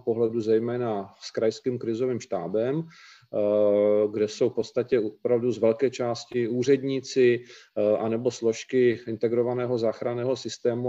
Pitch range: 115-135 Hz